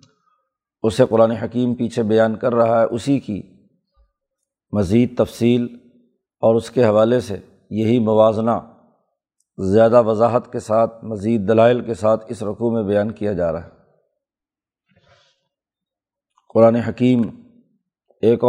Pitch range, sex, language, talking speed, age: 110-125 Hz, male, Urdu, 125 wpm, 50-69